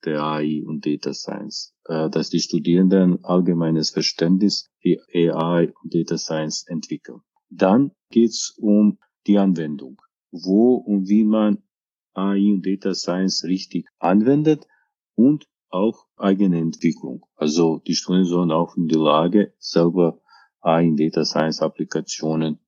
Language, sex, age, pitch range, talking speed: German, male, 40-59, 85-105 Hz, 135 wpm